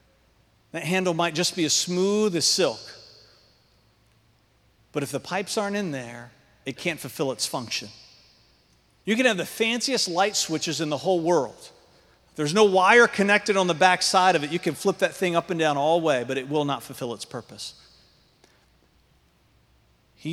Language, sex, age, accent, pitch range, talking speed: English, male, 40-59, American, 140-195 Hz, 185 wpm